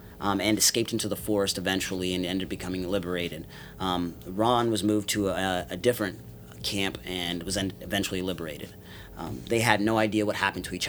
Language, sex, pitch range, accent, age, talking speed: English, male, 85-105 Hz, American, 30-49, 180 wpm